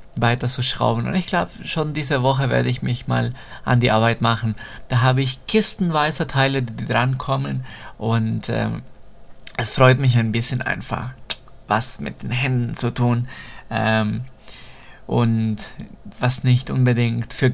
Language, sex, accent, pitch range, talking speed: English, male, German, 120-165 Hz, 155 wpm